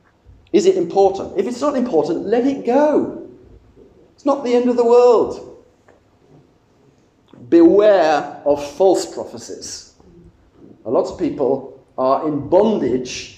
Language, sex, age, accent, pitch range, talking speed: English, male, 40-59, British, 145-220 Hz, 125 wpm